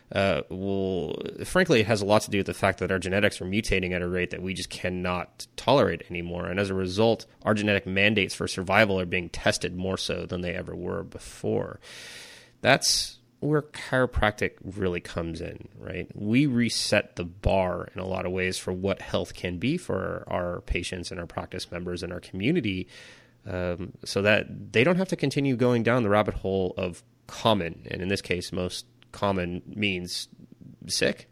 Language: English